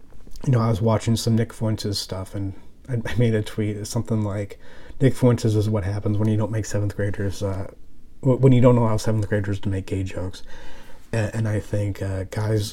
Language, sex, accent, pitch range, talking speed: English, male, American, 100-120 Hz, 205 wpm